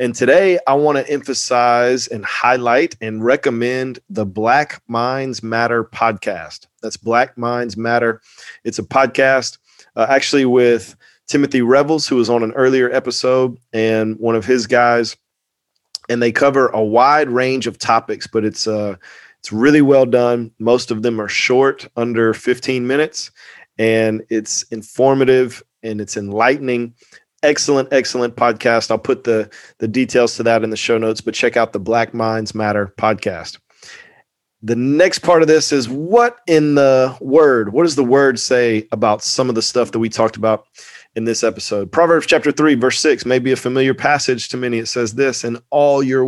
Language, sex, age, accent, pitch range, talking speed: English, male, 30-49, American, 115-130 Hz, 175 wpm